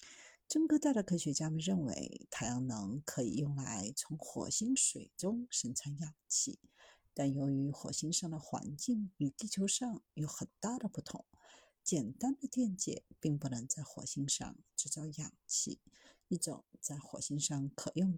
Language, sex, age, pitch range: Chinese, female, 50-69, 150-240 Hz